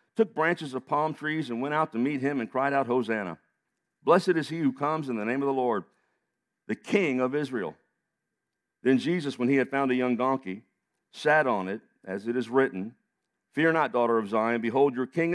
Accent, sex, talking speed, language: American, male, 210 wpm, English